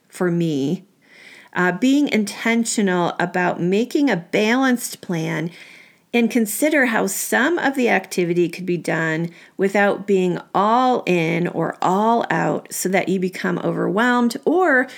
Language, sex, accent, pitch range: English, female, American, 180-230 Hz